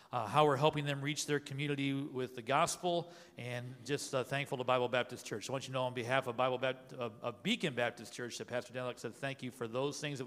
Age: 40-59